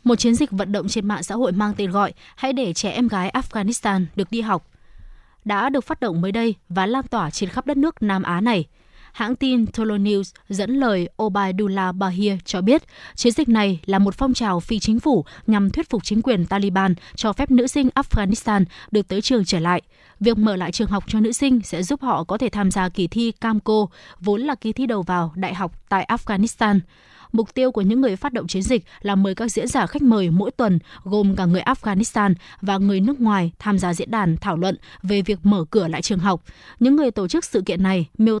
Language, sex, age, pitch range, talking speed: Vietnamese, female, 20-39, 195-235 Hz, 230 wpm